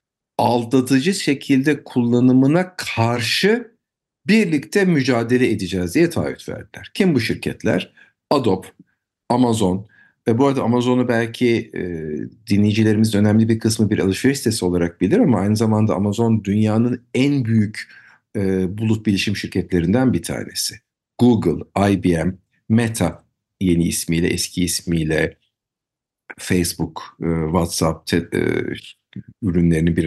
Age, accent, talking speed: 50-69, native, 115 wpm